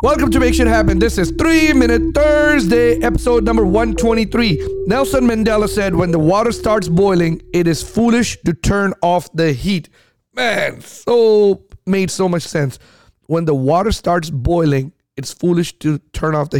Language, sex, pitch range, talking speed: English, male, 155-195 Hz, 165 wpm